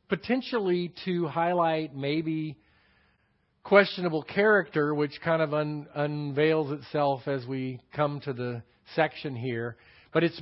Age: 50-69